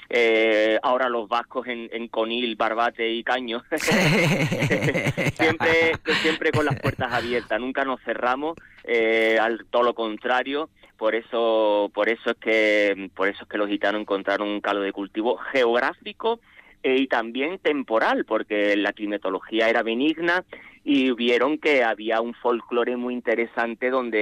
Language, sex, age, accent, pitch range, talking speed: Spanish, male, 30-49, Spanish, 110-130 Hz, 150 wpm